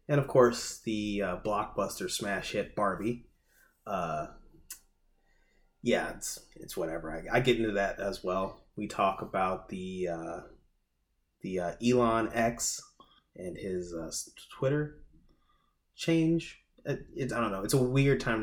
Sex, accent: male, American